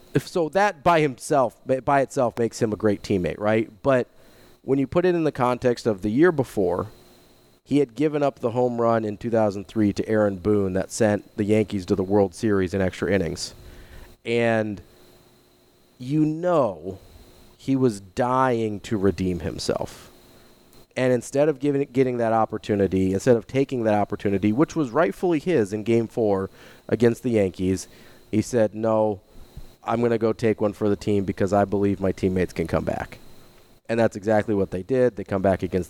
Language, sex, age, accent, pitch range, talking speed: English, male, 30-49, American, 95-120 Hz, 180 wpm